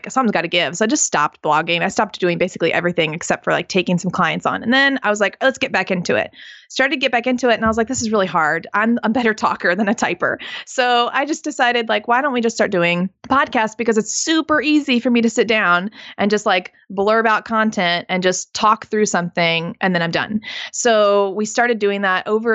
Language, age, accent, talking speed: English, 20-39, American, 250 wpm